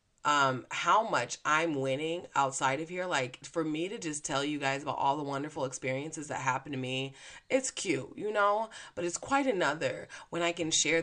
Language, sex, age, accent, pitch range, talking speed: English, female, 30-49, American, 135-175 Hz, 200 wpm